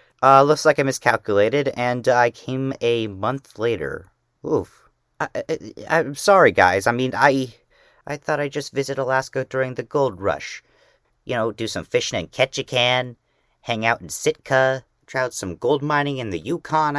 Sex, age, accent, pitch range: male, 40-59, American, 85-140 Hz